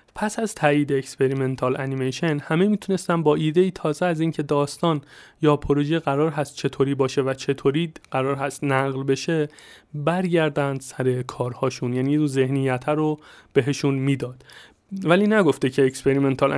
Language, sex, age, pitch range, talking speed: Persian, male, 30-49, 130-155 Hz, 140 wpm